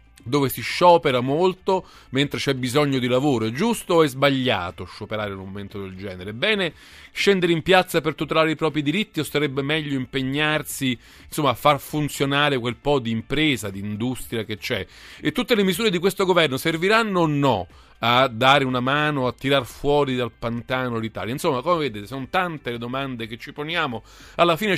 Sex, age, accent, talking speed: male, 40-59, native, 185 wpm